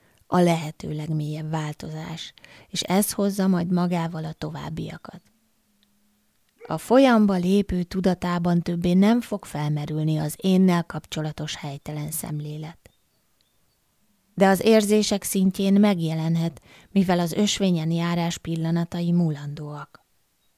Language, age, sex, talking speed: Hungarian, 20-39, female, 100 wpm